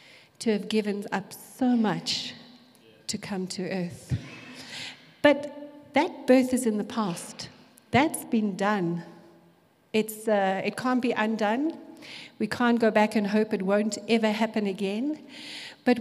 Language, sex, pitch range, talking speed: English, female, 195-250 Hz, 140 wpm